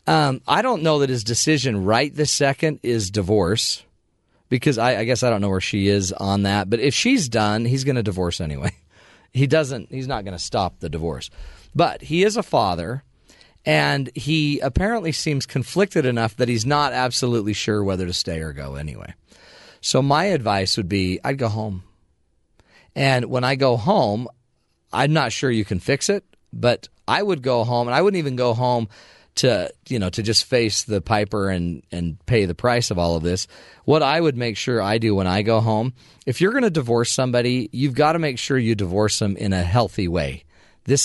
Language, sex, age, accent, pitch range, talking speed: English, male, 40-59, American, 100-140 Hz, 210 wpm